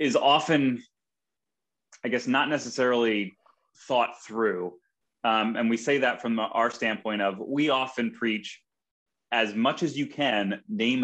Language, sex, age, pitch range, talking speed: English, male, 20-39, 100-125 Hz, 140 wpm